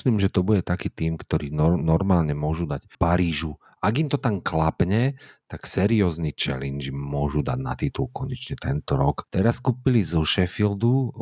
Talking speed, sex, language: 165 wpm, male, Slovak